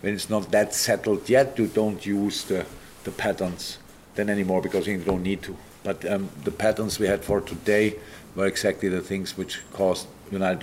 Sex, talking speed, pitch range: male, 190 wpm, 95-105 Hz